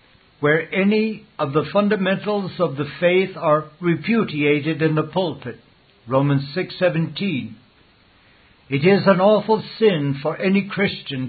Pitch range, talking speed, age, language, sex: 145-185 Hz, 120 wpm, 60-79, English, male